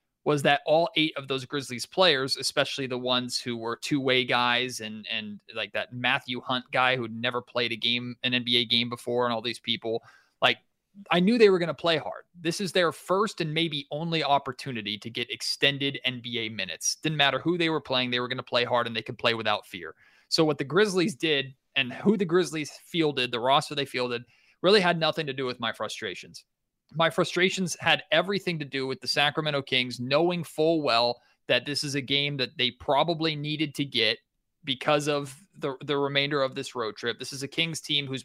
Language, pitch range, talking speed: English, 120-150 Hz, 210 wpm